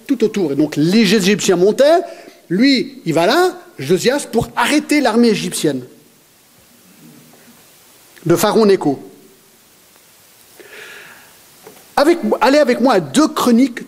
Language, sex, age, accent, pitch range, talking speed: French, male, 50-69, French, 175-280 Hz, 110 wpm